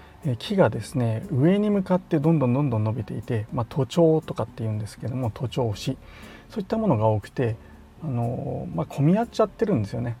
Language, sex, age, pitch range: Japanese, male, 40-59, 115-145 Hz